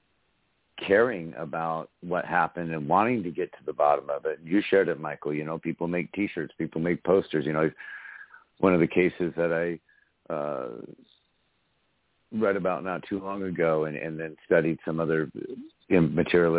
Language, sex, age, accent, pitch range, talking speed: English, male, 60-79, American, 80-95 Hz, 170 wpm